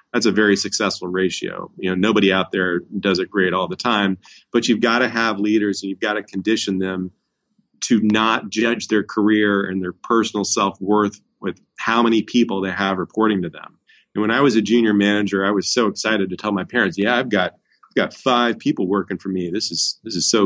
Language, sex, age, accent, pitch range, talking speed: English, male, 30-49, American, 95-110 Hz, 225 wpm